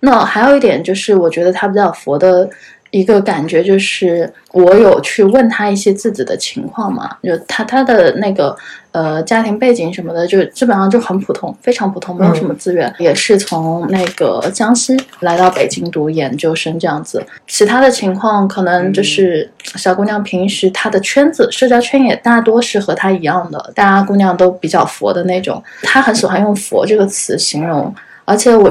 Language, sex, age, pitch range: Chinese, female, 10-29, 180-220 Hz